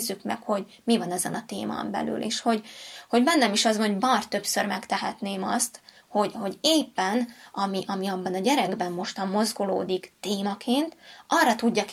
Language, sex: Hungarian, female